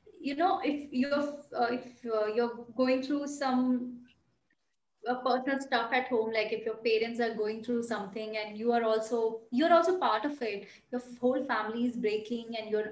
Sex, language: female, English